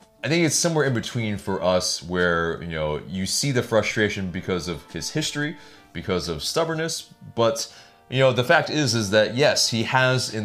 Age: 30-49